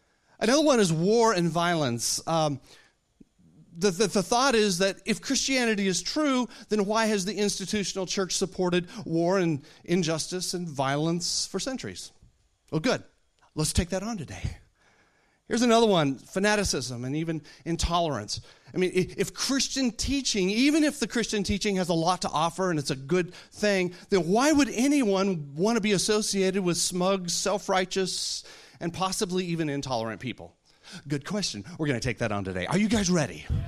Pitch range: 135-200 Hz